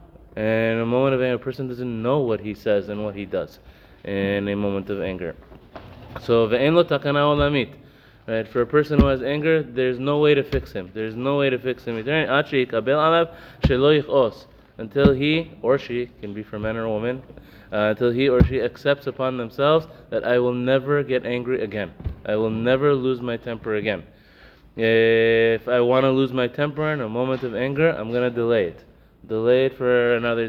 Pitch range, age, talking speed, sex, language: 115-145 Hz, 20-39, 185 wpm, male, English